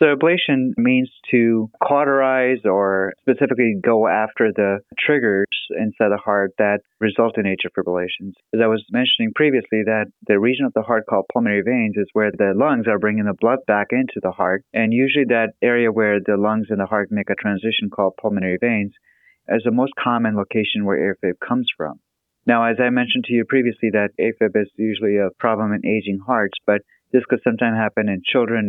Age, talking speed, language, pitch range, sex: 30-49, 190 wpm, English, 100-115 Hz, male